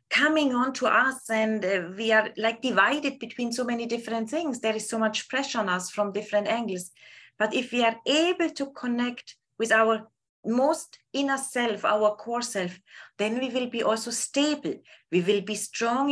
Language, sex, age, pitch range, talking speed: English, female, 30-49, 205-260 Hz, 180 wpm